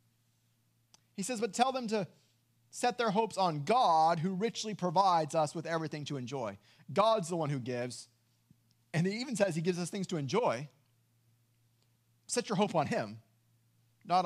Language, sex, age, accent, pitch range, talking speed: English, male, 30-49, American, 120-195 Hz, 170 wpm